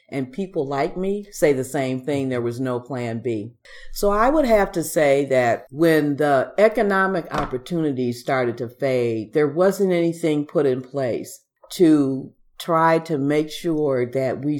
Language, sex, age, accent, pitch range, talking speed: English, female, 50-69, American, 135-180 Hz, 165 wpm